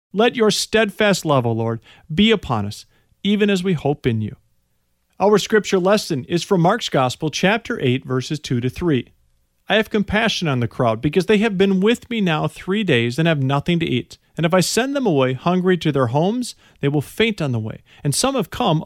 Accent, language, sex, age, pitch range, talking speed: American, English, male, 40-59, 150-215 Hz, 215 wpm